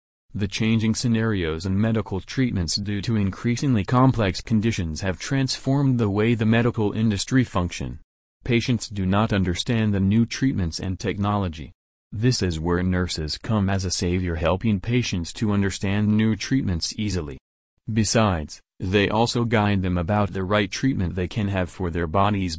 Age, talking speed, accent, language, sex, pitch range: 30-49, 155 wpm, American, English, male, 90-110 Hz